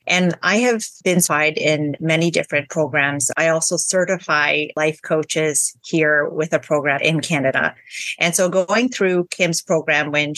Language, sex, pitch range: English, female, 150-180 Hz